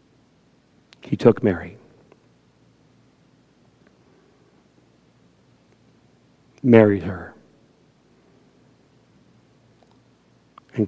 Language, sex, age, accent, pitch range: English, male, 40-59, American, 115-150 Hz